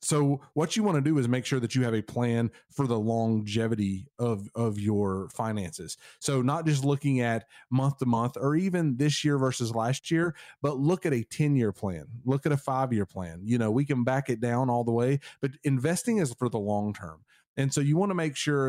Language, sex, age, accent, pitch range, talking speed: English, male, 30-49, American, 115-150 Hz, 230 wpm